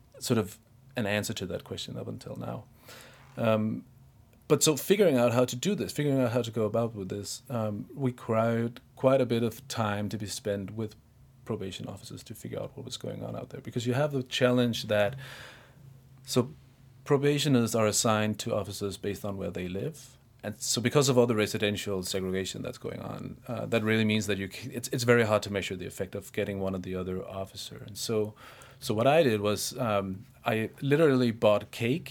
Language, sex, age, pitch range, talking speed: English, male, 30-49, 105-130 Hz, 205 wpm